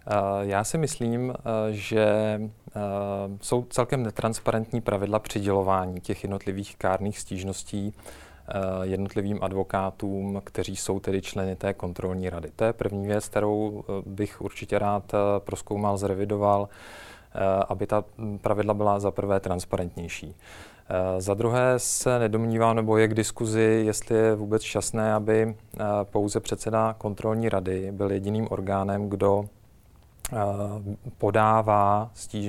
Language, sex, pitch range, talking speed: Czech, male, 95-110 Hz, 115 wpm